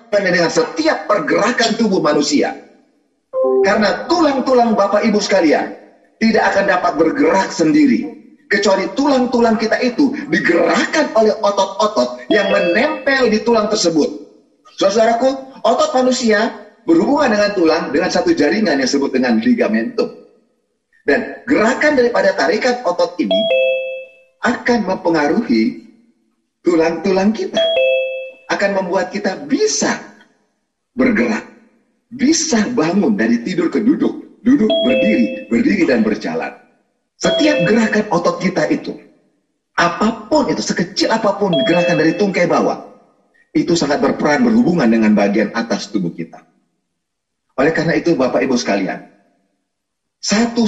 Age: 30-49